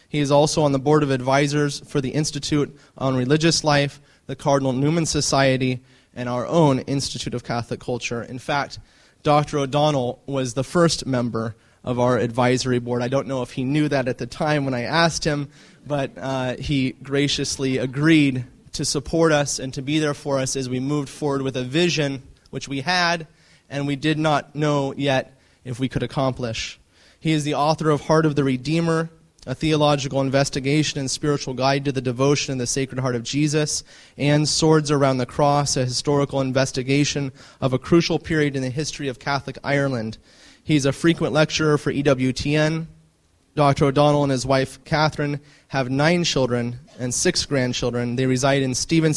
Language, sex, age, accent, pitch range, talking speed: English, male, 20-39, American, 130-150 Hz, 180 wpm